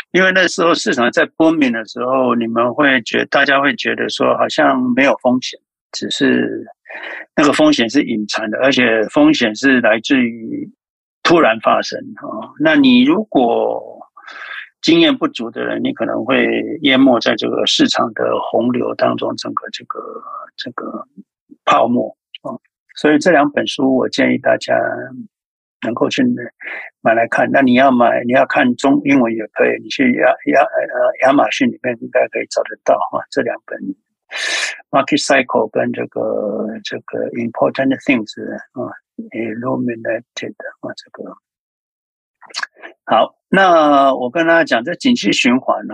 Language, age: Chinese, 60-79